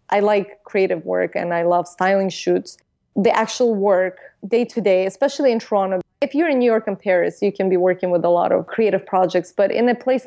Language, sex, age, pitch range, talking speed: English, female, 20-39, 180-220 Hz, 230 wpm